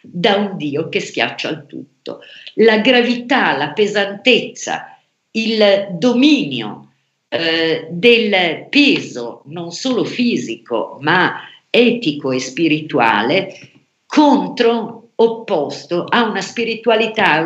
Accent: native